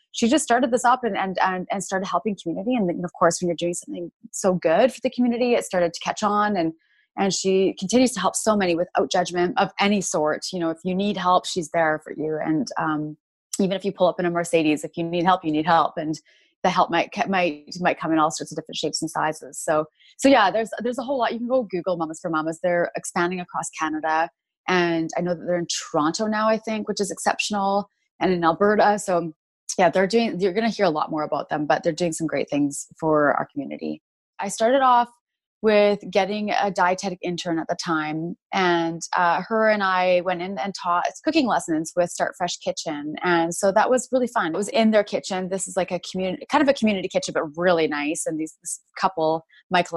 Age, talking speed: 20-39, 235 wpm